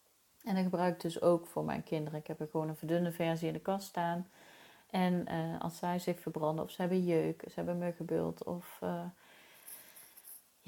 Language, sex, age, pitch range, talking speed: Dutch, female, 30-49, 155-180 Hz, 195 wpm